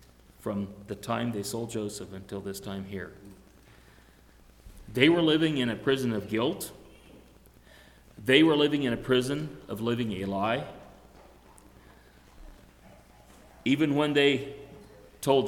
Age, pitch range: 40-59, 100-135 Hz